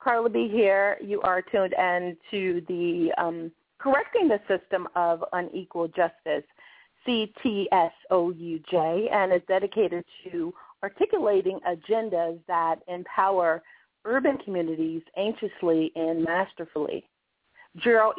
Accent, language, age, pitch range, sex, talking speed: American, English, 40-59, 175-220 Hz, female, 100 wpm